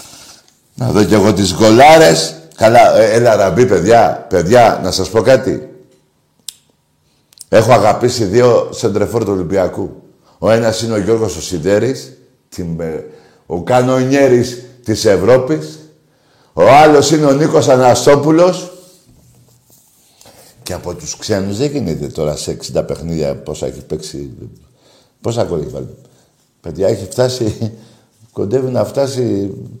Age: 60-79